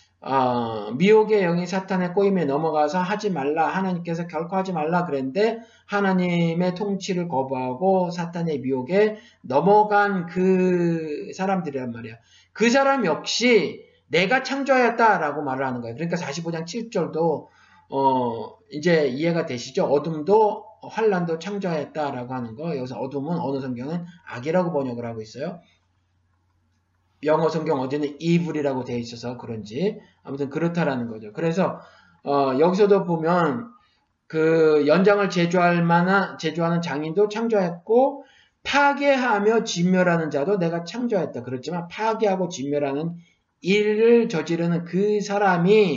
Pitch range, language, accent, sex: 145-205 Hz, Korean, native, male